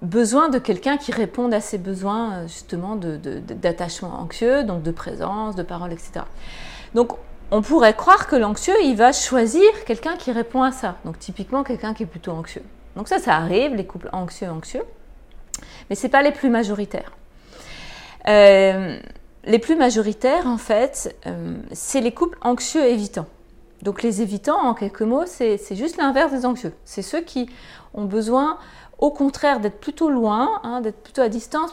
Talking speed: 175 wpm